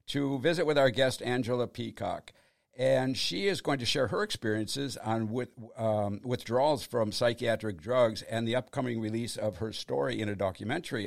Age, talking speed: 60-79, 170 wpm